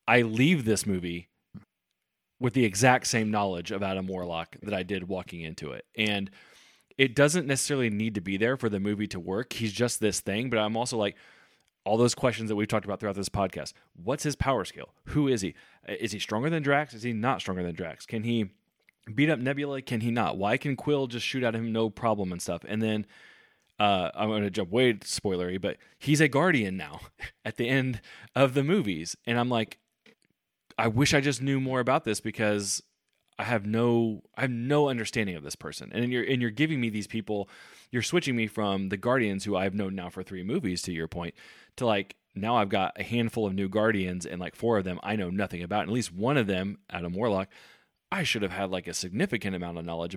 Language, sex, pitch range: English, male, 95-125 Hz